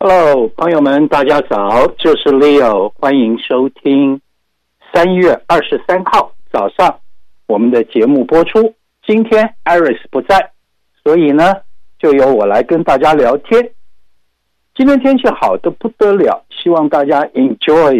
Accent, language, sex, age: native, Chinese, male, 60-79